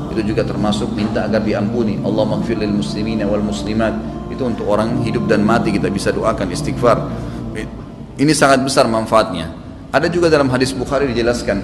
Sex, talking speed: male, 135 wpm